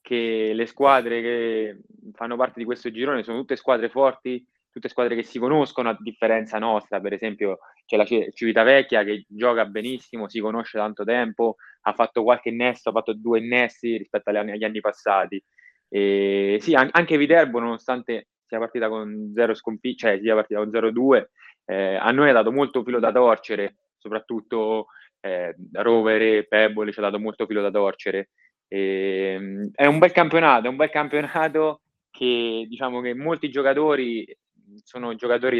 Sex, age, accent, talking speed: male, 20-39, native, 165 wpm